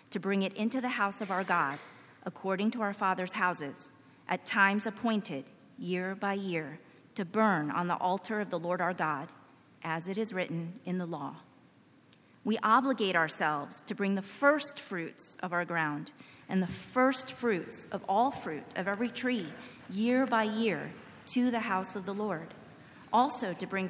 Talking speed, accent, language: 175 wpm, American, English